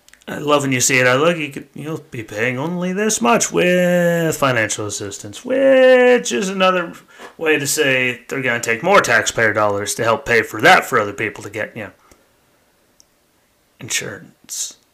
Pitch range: 105-145 Hz